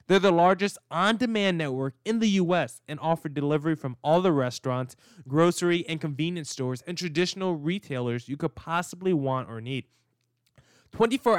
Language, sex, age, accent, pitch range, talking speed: English, male, 10-29, American, 130-180 Hz, 155 wpm